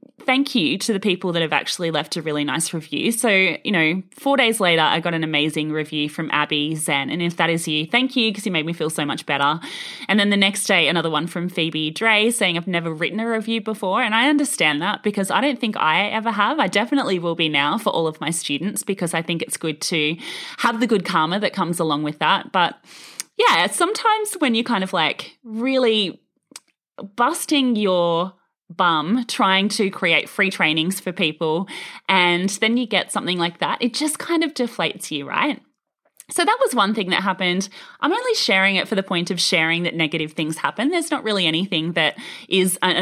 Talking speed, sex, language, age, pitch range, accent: 215 wpm, female, English, 20-39, 165-230 Hz, Australian